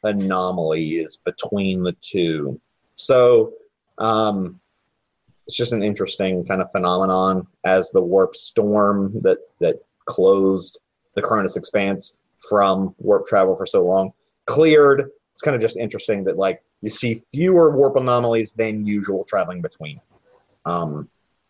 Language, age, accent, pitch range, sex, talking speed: English, 30-49, American, 100-145 Hz, male, 135 wpm